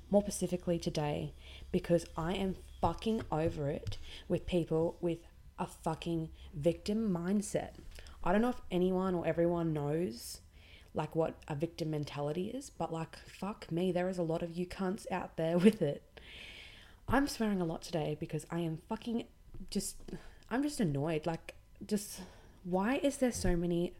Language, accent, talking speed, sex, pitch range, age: English, Australian, 165 wpm, female, 155-190 Hz, 20-39